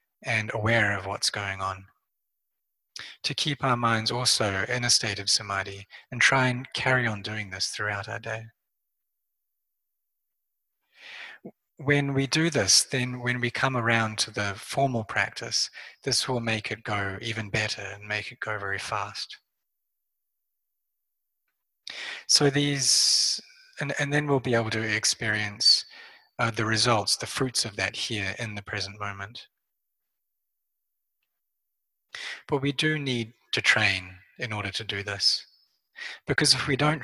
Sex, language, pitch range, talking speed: male, English, 105-125 Hz, 145 wpm